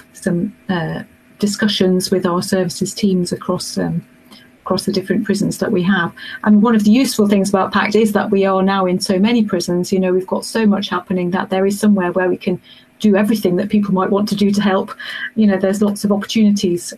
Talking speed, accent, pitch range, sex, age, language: 225 wpm, British, 190-215 Hz, female, 40-59, English